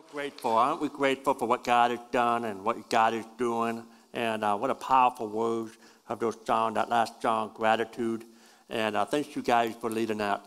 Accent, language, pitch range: American, English, 120-155 Hz